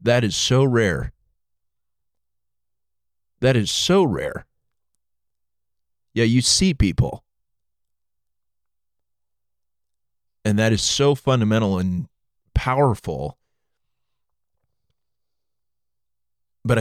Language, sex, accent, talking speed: English, male, American, 70 wpm